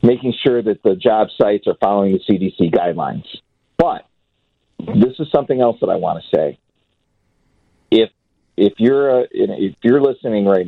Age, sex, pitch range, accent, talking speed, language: 40-59, male, 90-110 Hz, American, 165 wpm, English